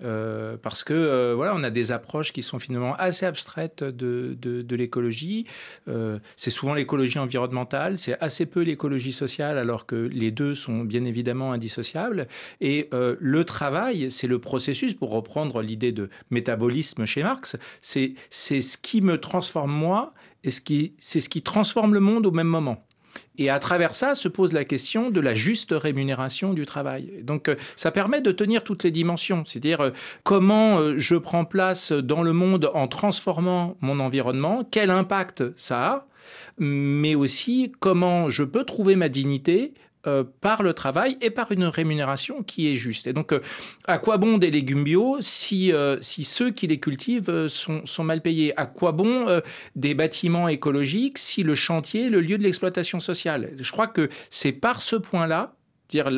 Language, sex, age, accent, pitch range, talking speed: French, male, 40-59, French, 135-185 Hz, 185 wpm